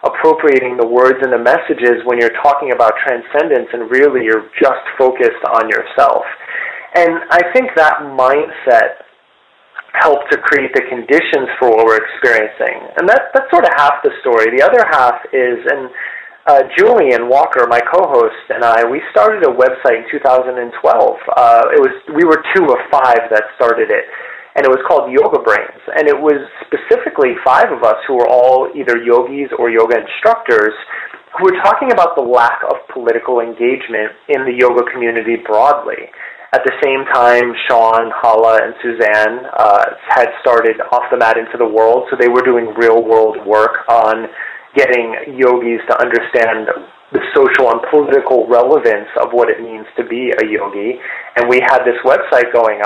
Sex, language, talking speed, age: male, English, 175 wpm, 30-49